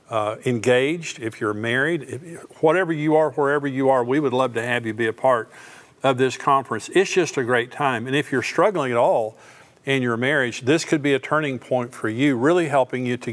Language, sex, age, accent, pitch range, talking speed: English, male, 50-69, American, 125-145 Hz, 230 wpm